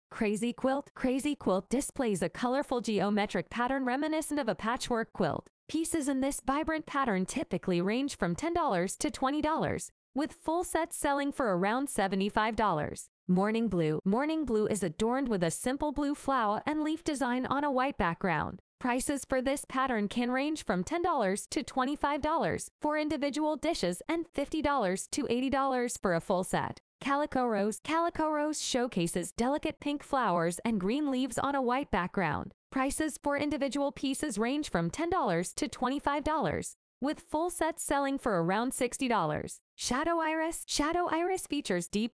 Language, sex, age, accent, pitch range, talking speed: English, female, 20-39, American, 210-300 Hz, 155 wpm